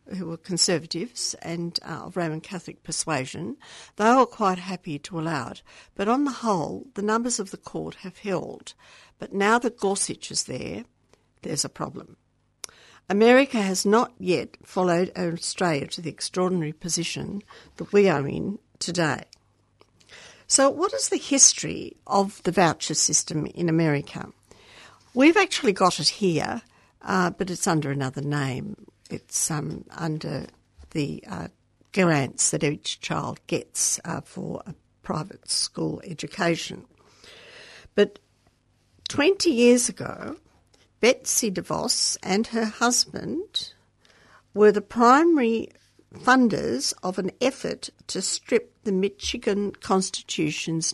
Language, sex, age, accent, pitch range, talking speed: English, female, 60-79, Australian, 165-230 Hz, 130 wpm